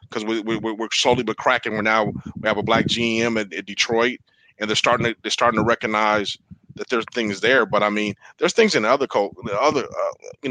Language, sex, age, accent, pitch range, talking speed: English, male, 30-49, American, 110-130 Hz, 230 wpm